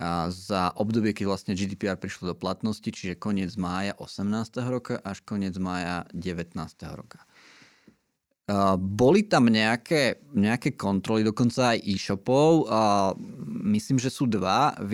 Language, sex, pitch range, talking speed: Slovak, male, 100-120 Hz, 130 wpm